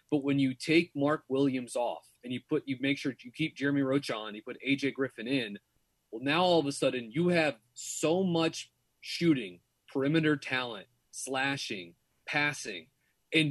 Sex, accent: male, American